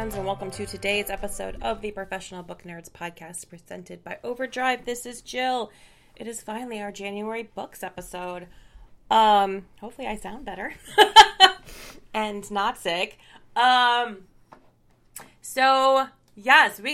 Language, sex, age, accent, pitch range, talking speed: English, female, 30-49, American, 180-230 Hz, 130 wpm